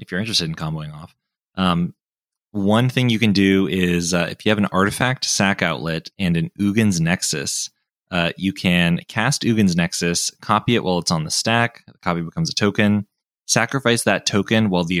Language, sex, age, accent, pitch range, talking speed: English, male, 20-39, American, 85-105 Hz, 190 wpm